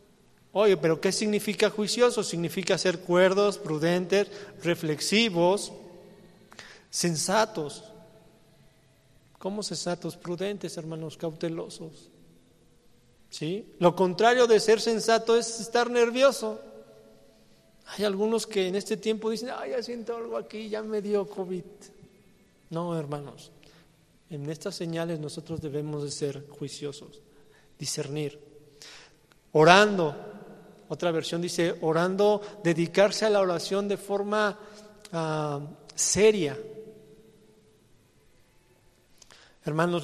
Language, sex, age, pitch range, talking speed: English, male, 40-59, 150-200 Hz, 95 wpm